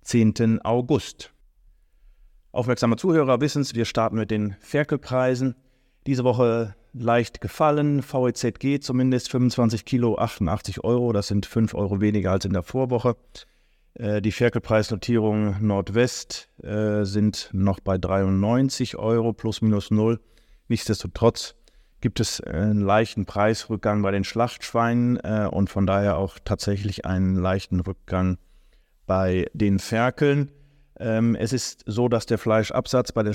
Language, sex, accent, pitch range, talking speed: German, male, German, 100-120 Hz, 130 wpm